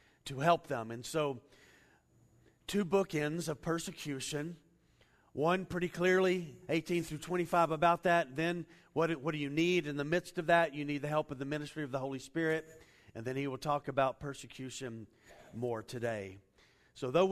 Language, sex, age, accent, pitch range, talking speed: English, male, 40-59, American, 135-170 Hz, 175 wpm